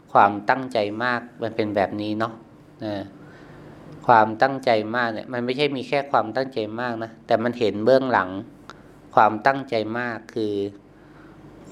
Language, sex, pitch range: Thai, male, 110-135 Hz